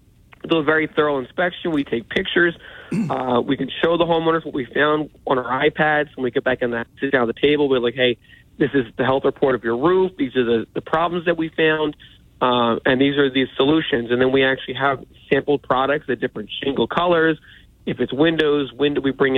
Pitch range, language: 125-150 Hz, English